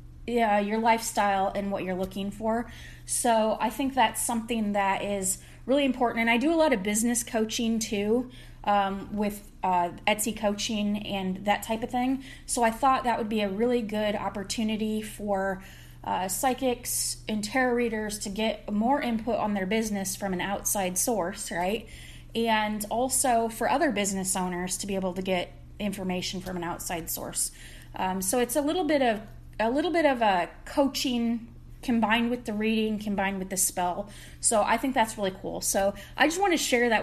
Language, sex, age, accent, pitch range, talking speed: English, female, 20-39, American, 200-240 Hz, 185 wpm